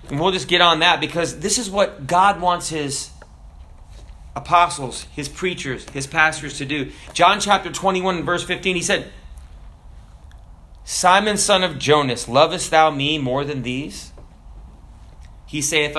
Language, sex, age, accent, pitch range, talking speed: English, male, 30-49, American, 130-190 Hz, 145 wpm